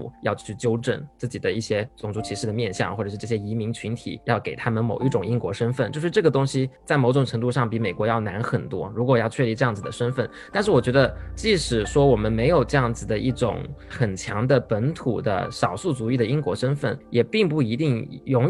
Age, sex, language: 20-39, male, Chinese